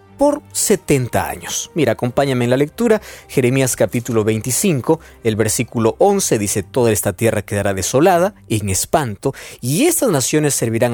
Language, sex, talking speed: Spanish, male, 145 wpm